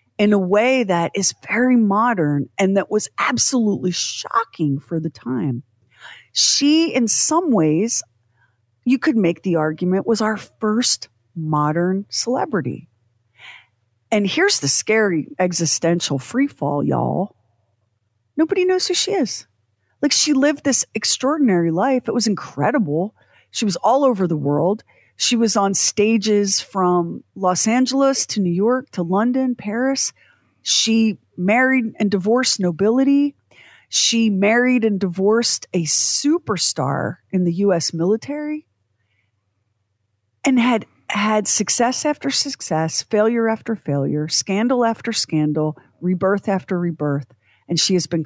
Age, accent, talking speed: 40-59, American, 130 wpm